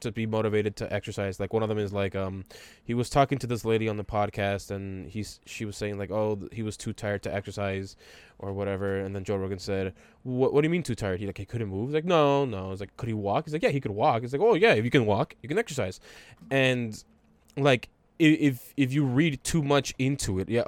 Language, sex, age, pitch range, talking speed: English, male, 10-29, 100-130 Hz, 265 wpm